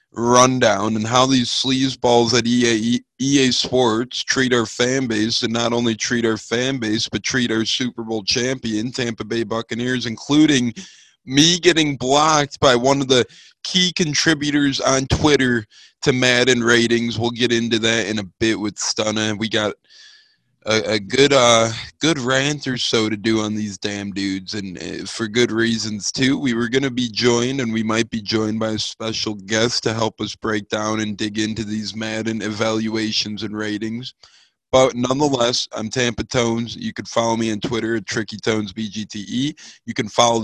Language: English